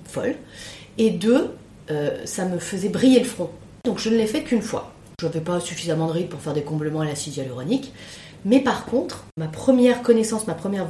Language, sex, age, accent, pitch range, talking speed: French, female, 30-49, French, 155-220 Hz, 205 wpm